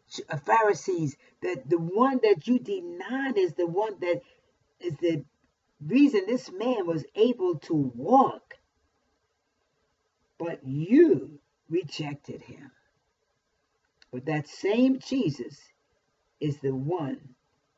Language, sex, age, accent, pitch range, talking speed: English, female, 50-69, American, 145-205 Hz, 105 wpm